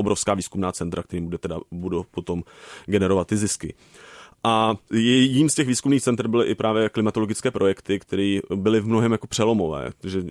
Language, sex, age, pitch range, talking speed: Czech, male, 30-49, 100-115 Hz, 155 wpm